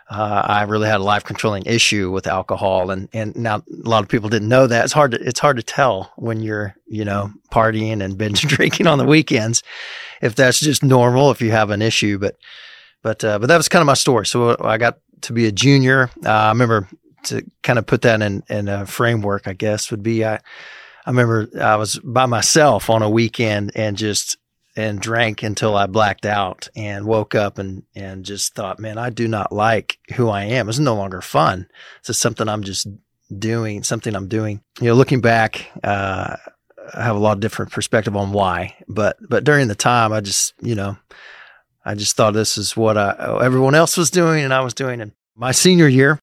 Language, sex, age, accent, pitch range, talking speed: English, male, 30-49, American, 105-130 Hz, 220 wpm